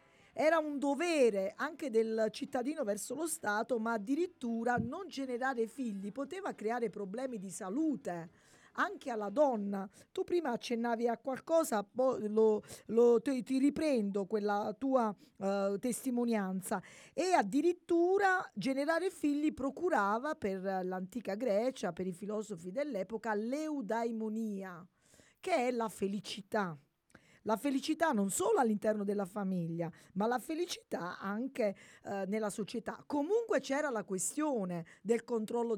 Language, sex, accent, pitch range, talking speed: Italian, female, native, 205-285 Hz, 115 wpm